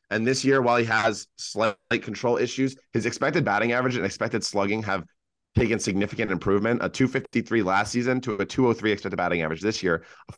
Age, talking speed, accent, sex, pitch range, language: 30-49, 190 wpm, American, male, 100-125 Hz, English